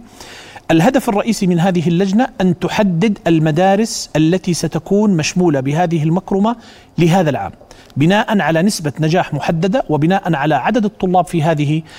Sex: male